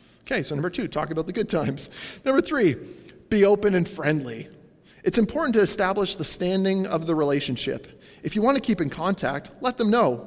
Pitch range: 145-220 Hz